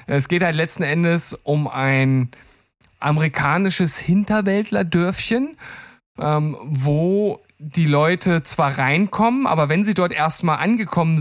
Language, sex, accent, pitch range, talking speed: German, male, German, 135-165 Hz, 105 wpm